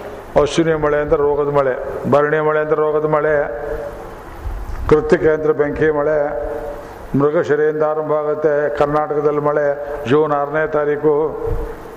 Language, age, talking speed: Kannada, 50-69, 110 wpm